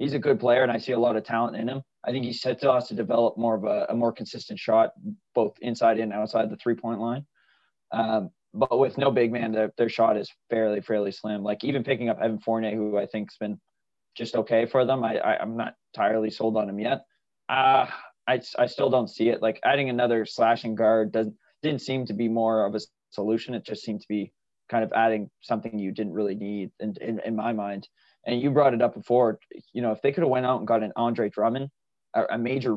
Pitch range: 110-130 Hz